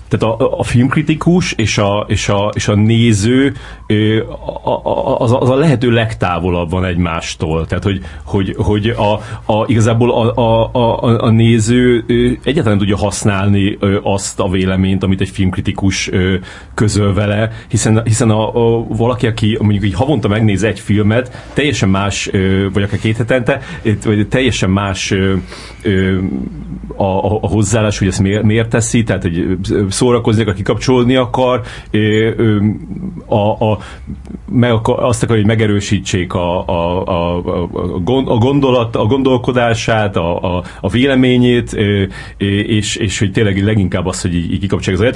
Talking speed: 140 wpm